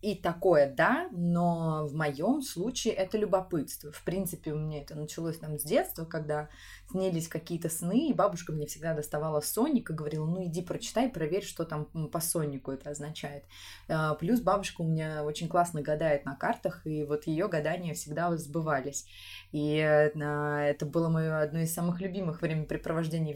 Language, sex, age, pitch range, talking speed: Russian, female, 20-39, 150-180 Hz, 165 wpm